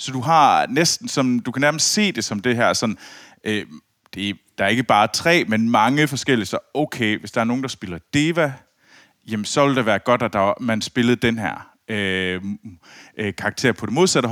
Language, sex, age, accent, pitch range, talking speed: Danish, male, 30-49, native, 100-135 Hz, 215 wpm